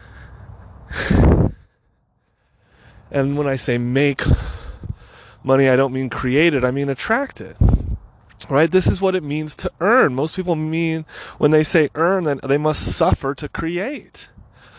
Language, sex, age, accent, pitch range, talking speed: English, male, 20-39, American, 120-175 Hz, 145 wpm